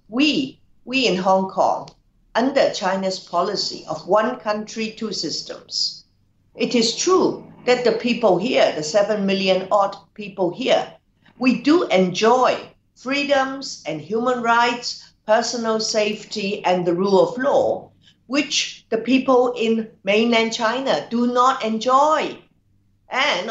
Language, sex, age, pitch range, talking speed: English, female, 50-69, 180-255 Hz, 130 wpm